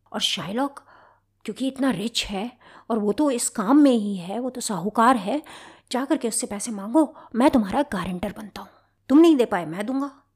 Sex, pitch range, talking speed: female, 185-245 Hz, 195 wpm